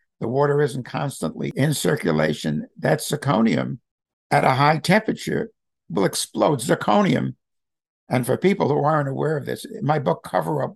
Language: English